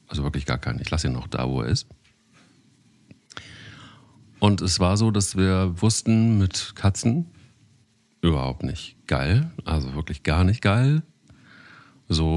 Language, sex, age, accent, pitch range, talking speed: German, male, 40-59, German, 75-105 Hz, 145 wpm